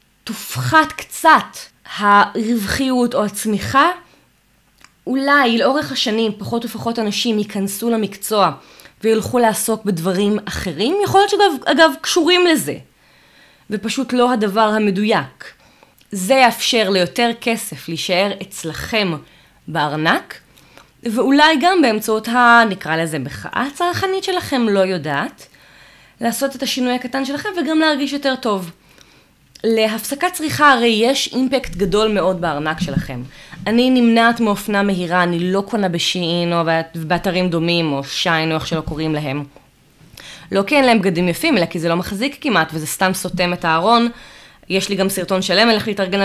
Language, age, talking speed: Hebrew, 20-39, 135 wpm